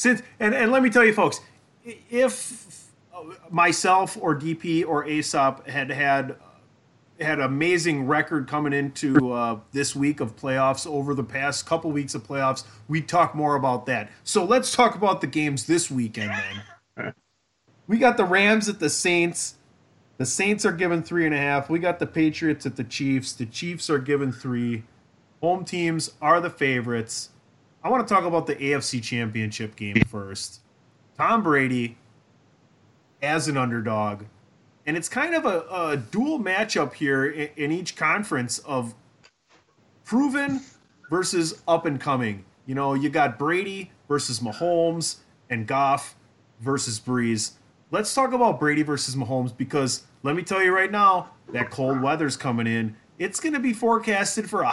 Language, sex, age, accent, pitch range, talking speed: English, male, 30-49, American, 130-175 Hz, 160 wpm